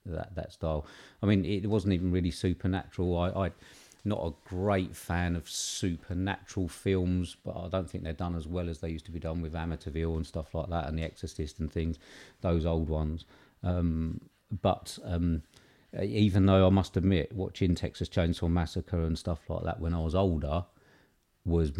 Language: English